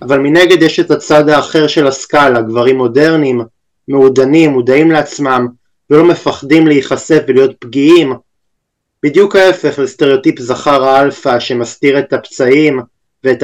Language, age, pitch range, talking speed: Hebrew, 20-39, 125-150 Hz, 120 wpm